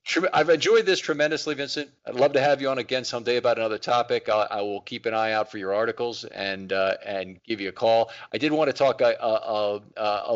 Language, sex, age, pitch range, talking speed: English, male, 40-59, 100-125 Hz, 230 wpm